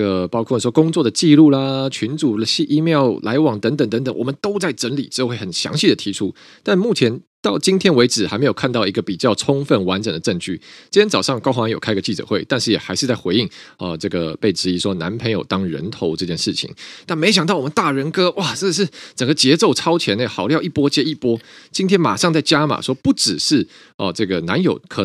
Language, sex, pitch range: Chinese, male, 105-155 Hz